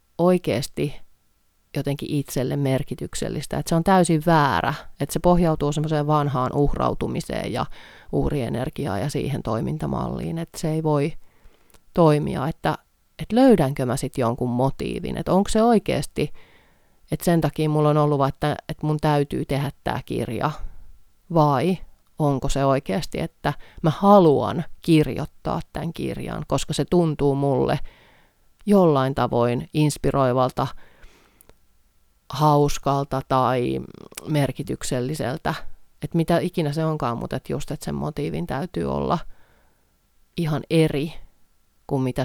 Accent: native